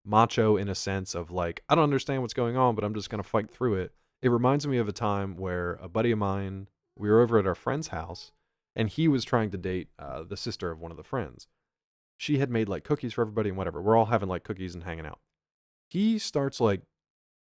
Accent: American